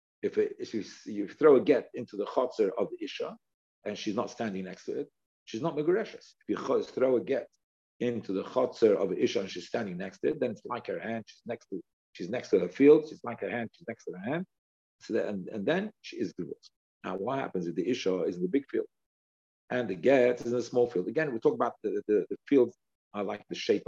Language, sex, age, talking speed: English, male, 50-69, 250 wpm